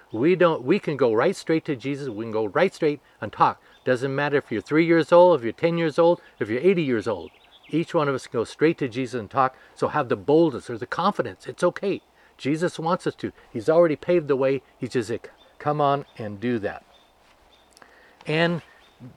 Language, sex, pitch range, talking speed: English, male, 135-170 Hz, 220 wpm